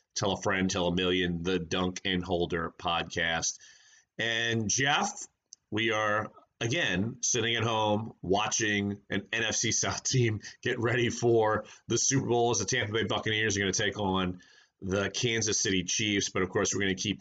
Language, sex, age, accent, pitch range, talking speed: English, male, 30-49, American, 95-125 Hz, 180 wpm